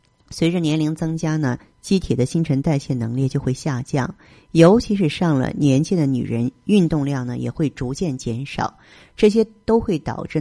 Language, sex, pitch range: Chinese, female, 130-170 Hz